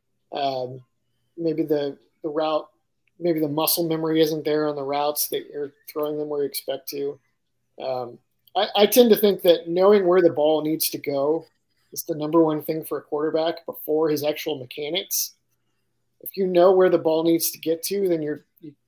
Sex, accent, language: male, American, English